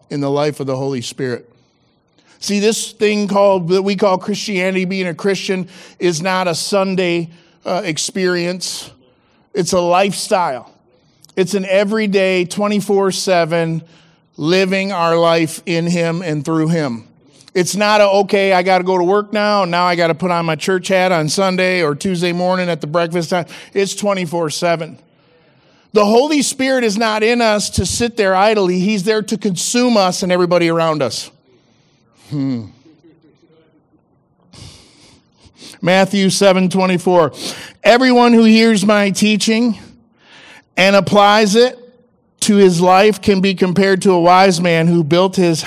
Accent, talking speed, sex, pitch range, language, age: American, 150 wpm, male, 165-205 Hz, English, 50-69